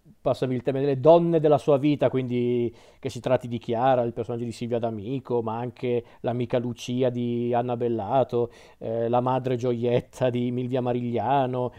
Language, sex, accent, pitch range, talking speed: Italian, male, native, 120-150 Hz, 170 wpm